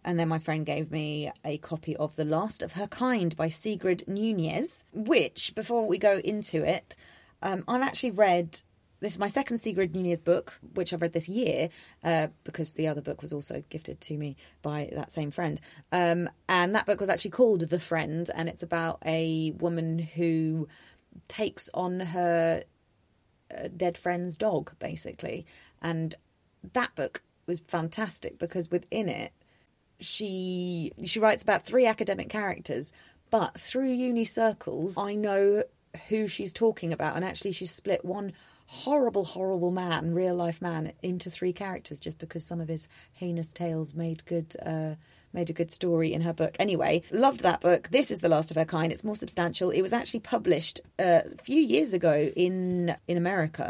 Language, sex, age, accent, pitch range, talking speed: English, female, 30-49, British, 160-200 Hz, 175 wpm